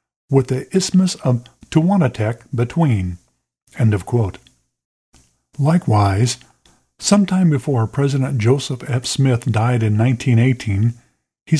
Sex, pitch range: male, 110-150 Hz